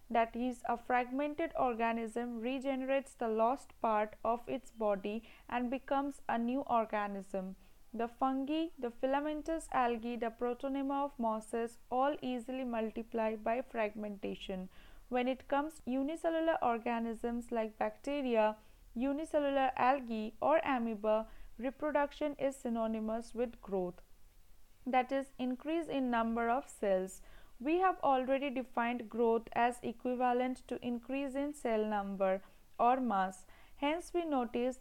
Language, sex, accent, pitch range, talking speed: English, female, Indian, 225-275 Hz, 120 wpm